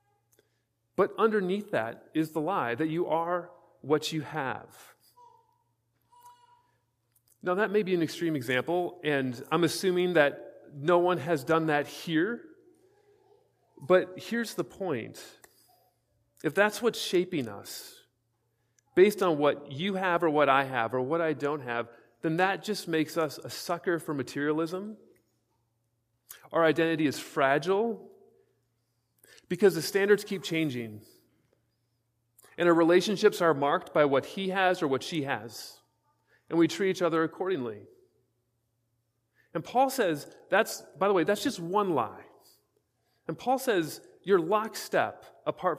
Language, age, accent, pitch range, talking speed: English, 40-59, American, 120-190 Hz, 140 wpm